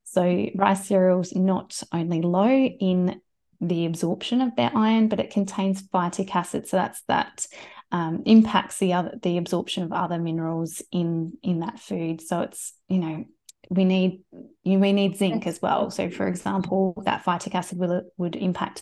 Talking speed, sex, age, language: 170 wpm, female, 20-39, English